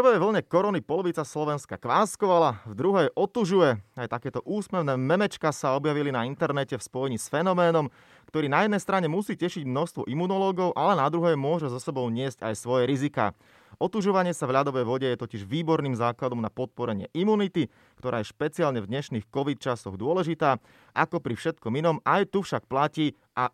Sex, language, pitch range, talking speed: male, Slovak, 125-165 Hz, 175 wpm